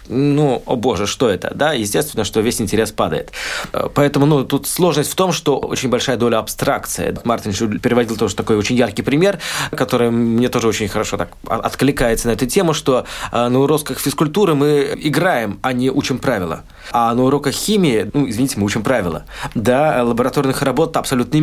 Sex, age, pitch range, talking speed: male, 20-39, 115-140 Hz, 175 wpm